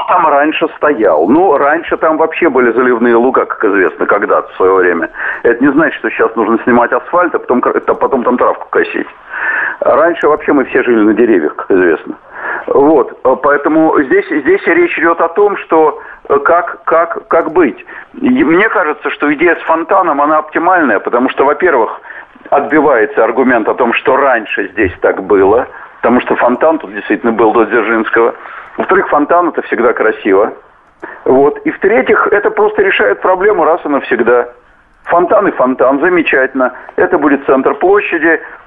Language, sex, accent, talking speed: Russian, male, native, 155 wpm